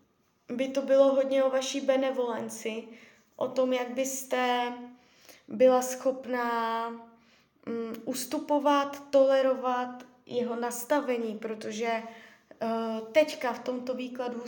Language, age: Czech, 20-39